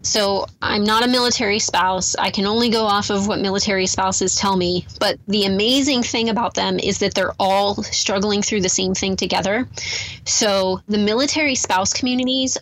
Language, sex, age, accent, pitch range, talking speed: English, female, 20-39, American, 195-235 Hz, 180 wpm